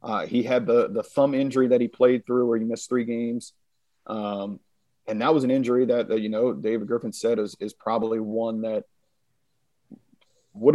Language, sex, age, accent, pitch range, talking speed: English, male, 40-59, American, 110-130 Hz, 195 wpm